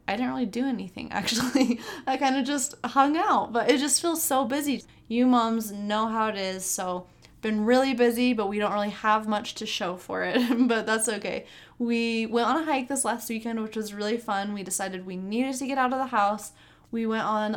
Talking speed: 225 wpm